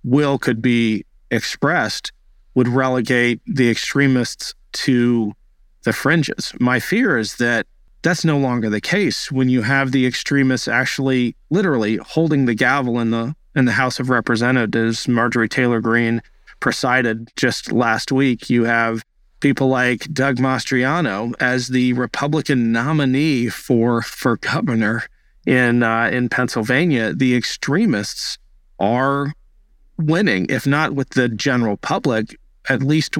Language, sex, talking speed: English, male, 130 wpm